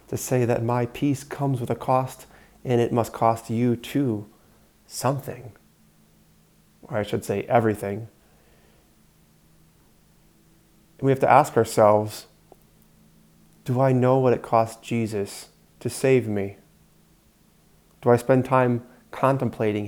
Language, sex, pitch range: English, male, 110-125 Hz